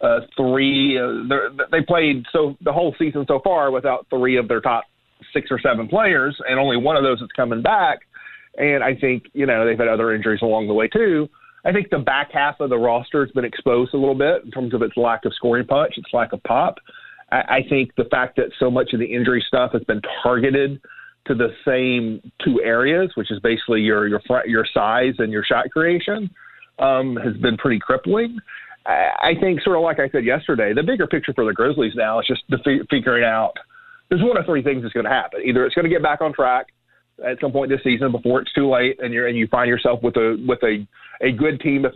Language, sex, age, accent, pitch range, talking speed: English, male, 40-59, American, 120-140 Hz, 235 wpm